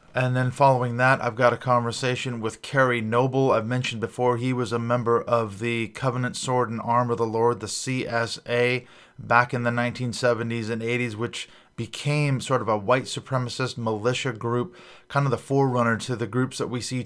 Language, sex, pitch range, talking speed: English, male, 115-125 Hz, 190 wpm